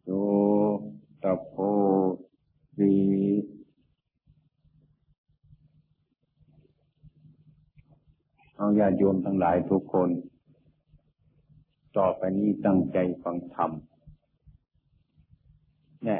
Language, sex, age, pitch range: Thai, male, 50-69, 95-145 Hz